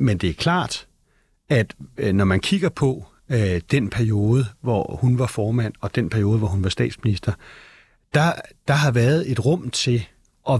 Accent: native